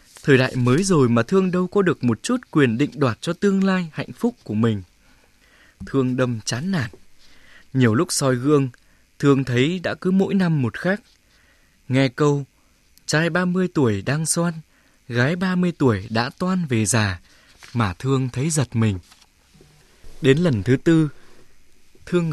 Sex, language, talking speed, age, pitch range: male, Vietnamese, 165 wpm, 20-39, 120-160 Hz